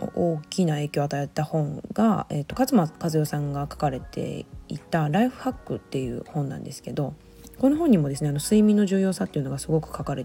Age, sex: 20-39, female